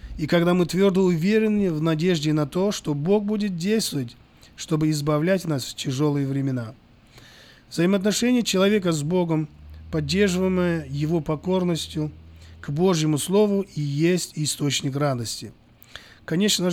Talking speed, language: 120 wpm, Russian